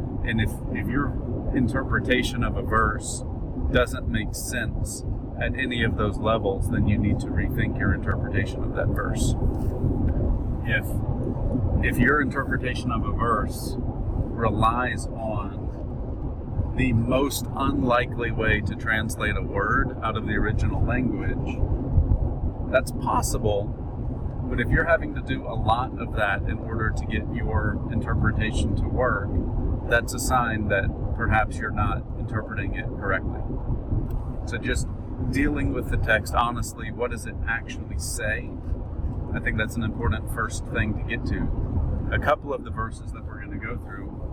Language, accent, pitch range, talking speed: English, American, 100-120 Hz, 150 wpm